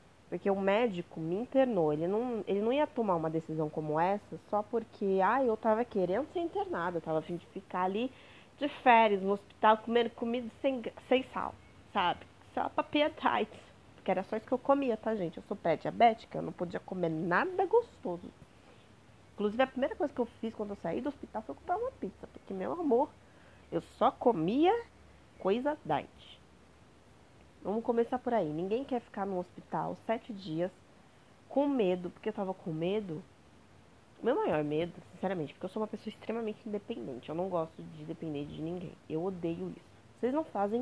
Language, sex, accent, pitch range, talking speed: Portuguese, female, Brazilian, 175-235 Hz, 185 wpm